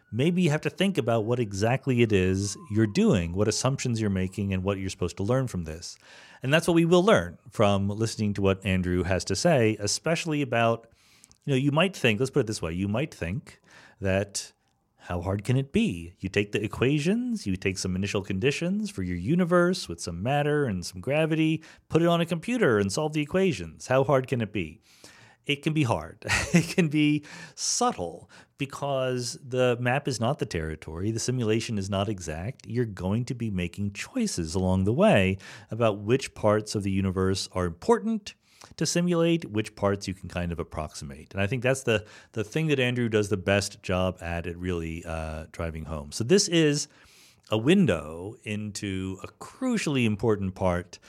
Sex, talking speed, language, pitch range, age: male, 195 wpm, English, 95-145 Hz, 40-59